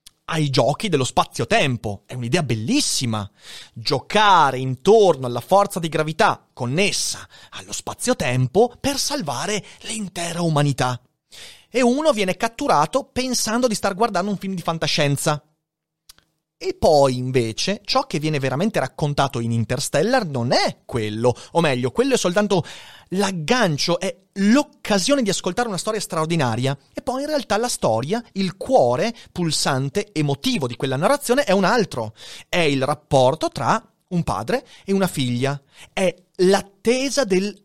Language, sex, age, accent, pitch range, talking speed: Italian, male, 30-49, native, 130-205 Hz, 135 wpm